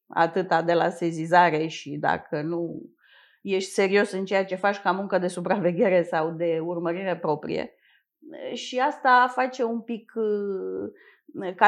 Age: 30-49